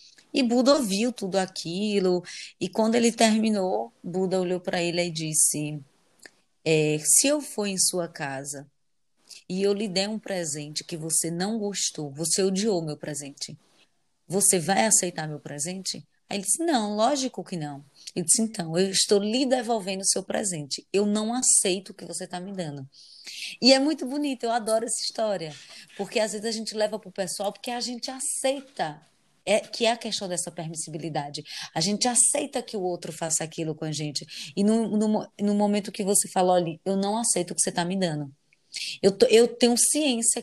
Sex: female